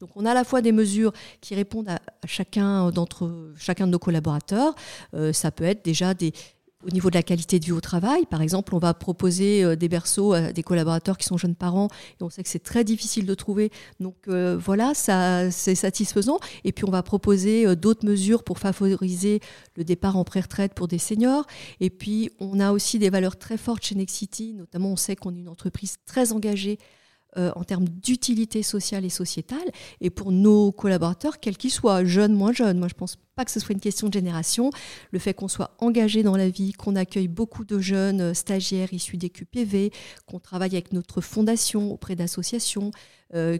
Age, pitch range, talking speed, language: 50-69, 180-215 Hz, 210 wpm, French